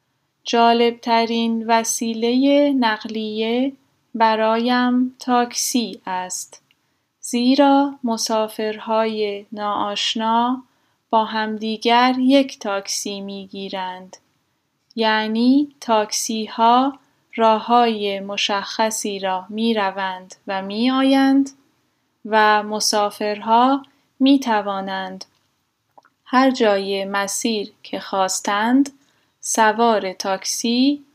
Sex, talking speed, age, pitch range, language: female, 75 wpm, 10-29, 205-250 Hz, Persian